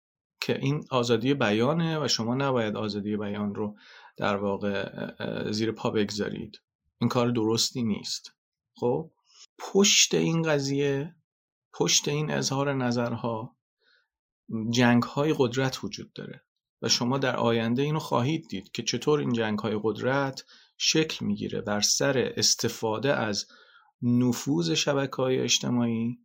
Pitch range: 120-155 Hz